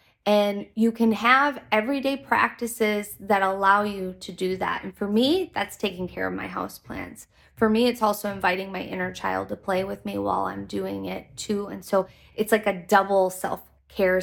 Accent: American